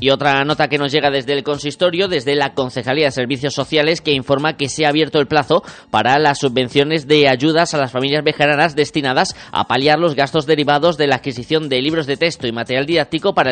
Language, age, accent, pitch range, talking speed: Spanish, 20-39, Spanish, 130-160 Hz, 220 wpm